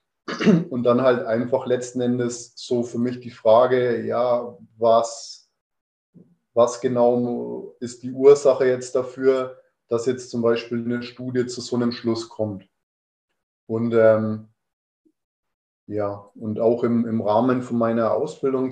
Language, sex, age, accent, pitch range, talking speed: German, male, 30-49, German, 115-125 Hz, 135 wpm